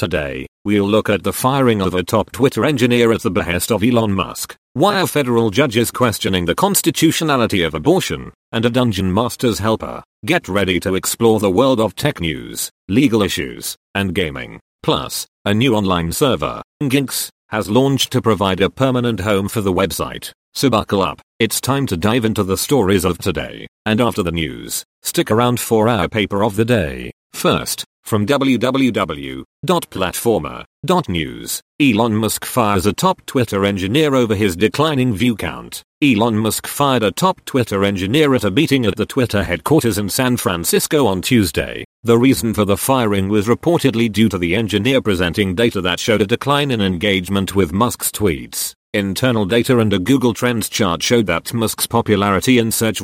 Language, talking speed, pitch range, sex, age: English, 175 wpm, 100-125 Hz, male, 40-59